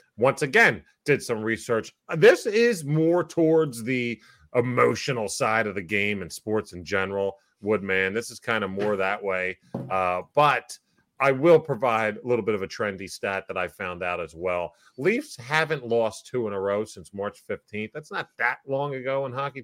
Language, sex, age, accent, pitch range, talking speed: English, male, 30-49, American, 105-155 Hz, 190 wpm